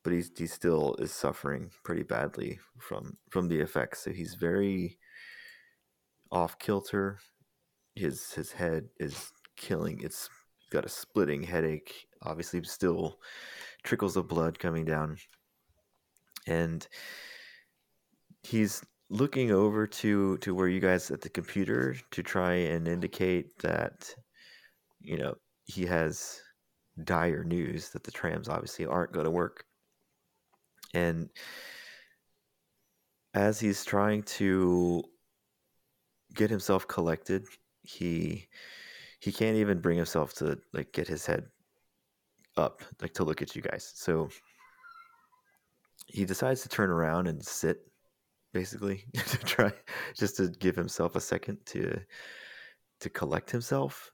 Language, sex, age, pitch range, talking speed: English, male, 30-49, 85-105 Hz, 125 wpm